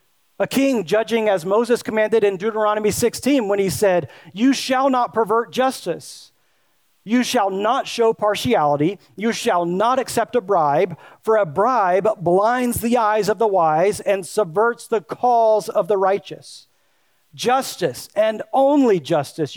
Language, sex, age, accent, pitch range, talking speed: English, male, 40-59, American, 180-230 Hz, 145 wpm